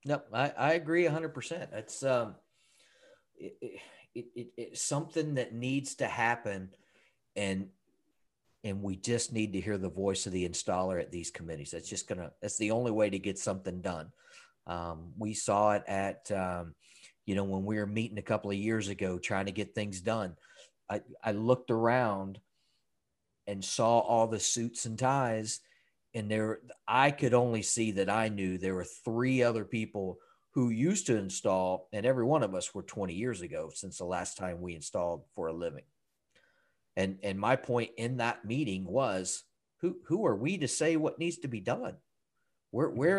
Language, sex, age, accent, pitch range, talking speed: English, male, 40-59, American, 95-120 Hz, 185 wpm